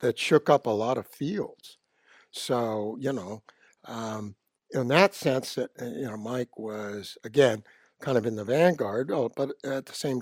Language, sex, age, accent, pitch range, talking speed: English, male, 60-79, American, 115-150 Hz, 165 wpm